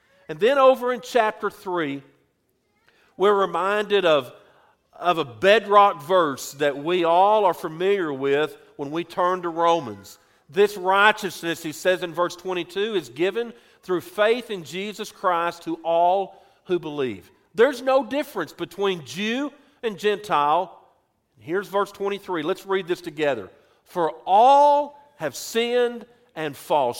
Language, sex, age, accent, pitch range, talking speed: English, male, 50-69, American, 175-235 Hz, 140 wpm